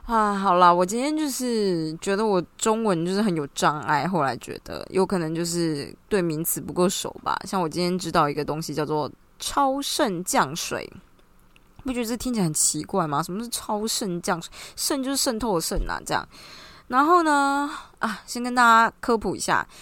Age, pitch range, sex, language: 20-39, 160-210 Hz, female, Chinese